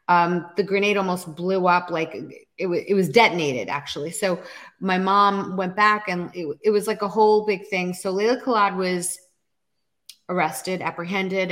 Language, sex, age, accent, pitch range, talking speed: English, female, 30-49, American, 170-205 Hz, 165 wpm